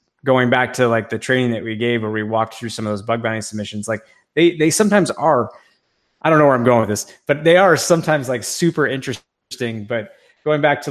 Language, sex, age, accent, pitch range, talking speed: English, male, 20-39, American, 110-125 Hz, 235 wpm